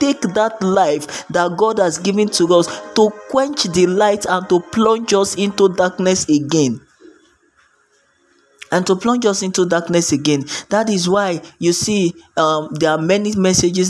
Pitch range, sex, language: 165-205 Hz, male, English